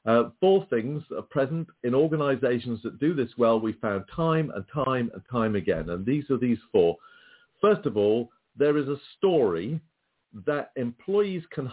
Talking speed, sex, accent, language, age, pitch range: 175 wpm, male, British, English, 50-69, 120-165 Hz